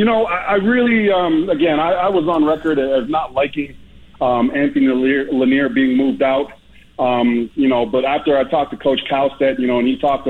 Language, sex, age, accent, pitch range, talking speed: English, male, 40-59, American, 135-190 Hz, 200 wpm